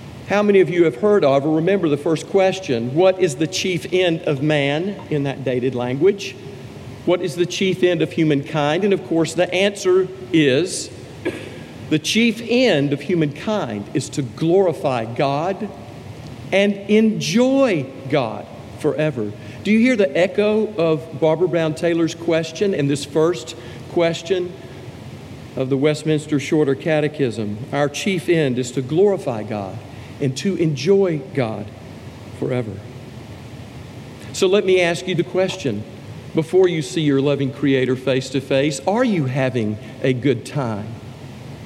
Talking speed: 145 wpm